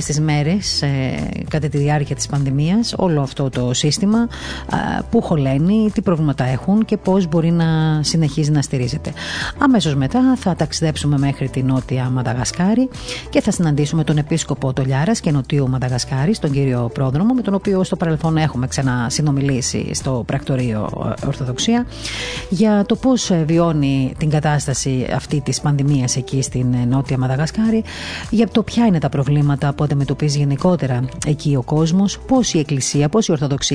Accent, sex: native, female